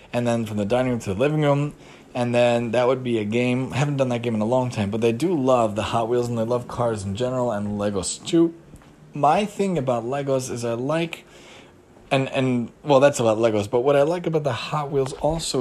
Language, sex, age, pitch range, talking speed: English, male, 20-39, 115-140 Hz, 245 wpm